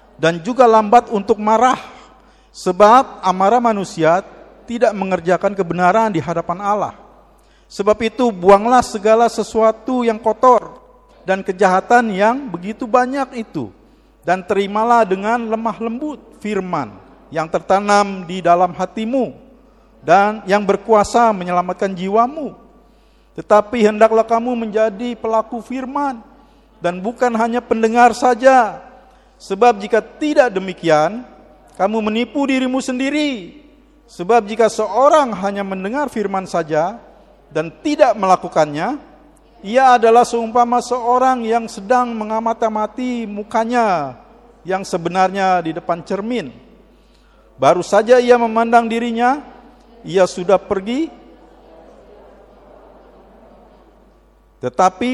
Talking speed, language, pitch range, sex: 100 wpm, Indonesian, 190-245 Hz, male